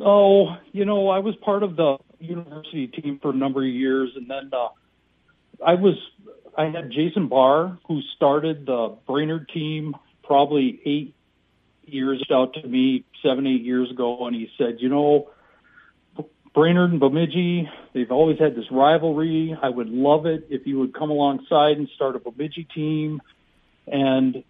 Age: 40-59